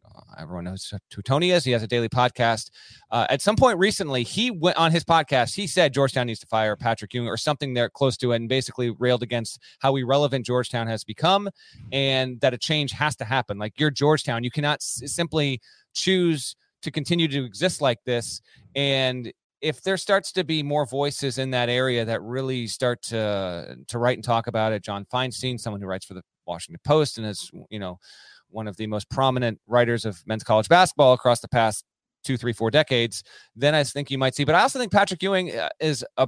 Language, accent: English, American